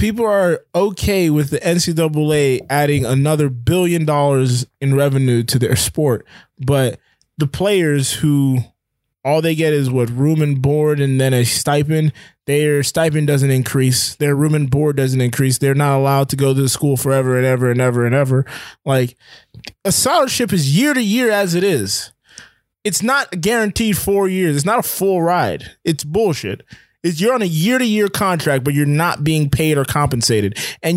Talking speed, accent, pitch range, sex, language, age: 180 wpm, American, 135-175 Hz, male, English, 20-39